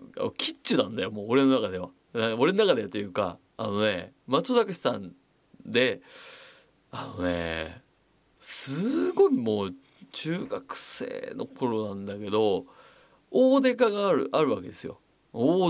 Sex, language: male, Japanese